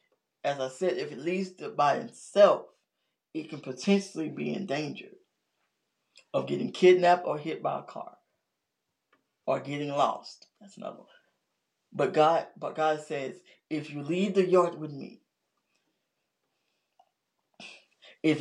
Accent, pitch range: American, 160-200 Hz